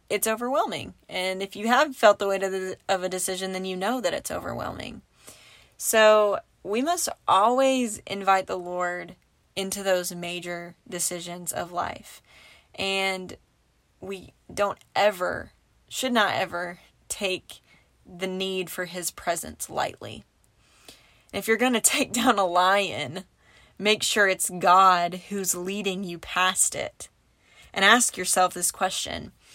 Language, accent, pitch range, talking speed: English, American, 175-205 Hz, 140 wpm